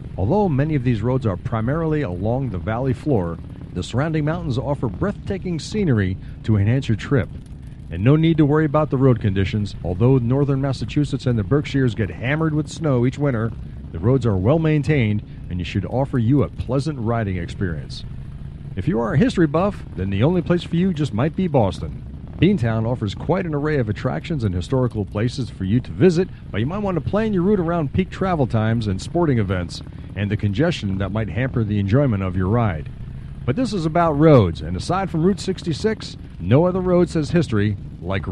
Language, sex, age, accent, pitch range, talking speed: English, male, 50-69, American, 110-160 Hz, 200 wpm